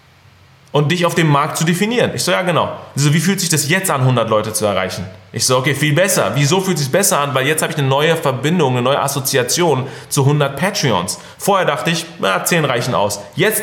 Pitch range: 125-160 Hz